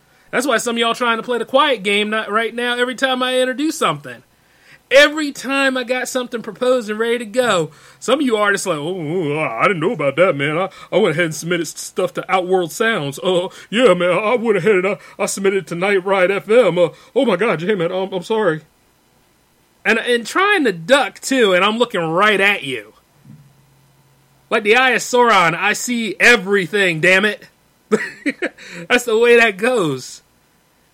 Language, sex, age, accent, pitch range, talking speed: English, male, 30-49, American, 185-245 Hz, 200 wpm